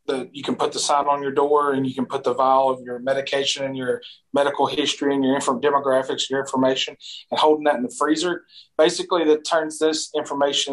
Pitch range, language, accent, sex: 140-155 Hz, English, American, male